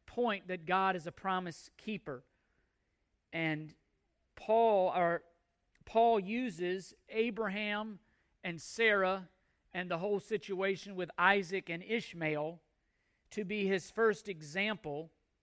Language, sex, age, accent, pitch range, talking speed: English, male, 50-69, American, 175-230 Hz, 110 wpm